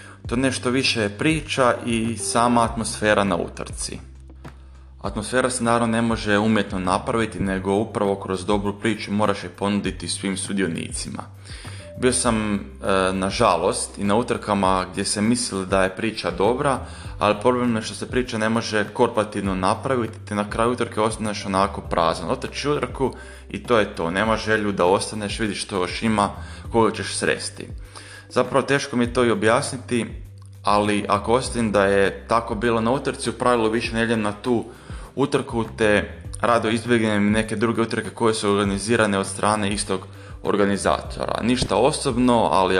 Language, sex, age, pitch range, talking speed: Croatian, male, 20-39, 95-115 Hz, 160 wpm